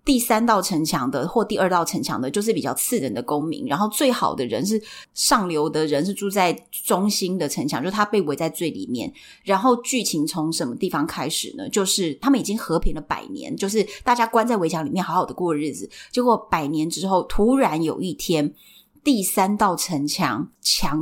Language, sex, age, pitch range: Chinese, female, 30-49, 165-245 Hz